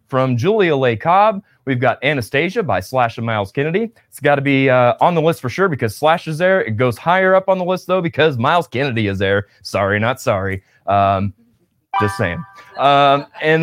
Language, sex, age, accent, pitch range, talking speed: English, male, 30-49, American, 105-160 Hz, 205 wpm